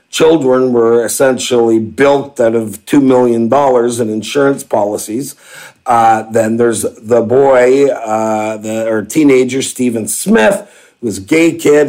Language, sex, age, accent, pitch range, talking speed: English, male, 50-69, American, 115-145 Hz, 135 wpm